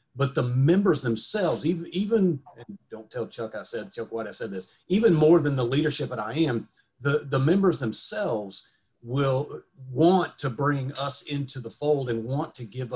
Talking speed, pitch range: 190 wpm, 110-140 Hz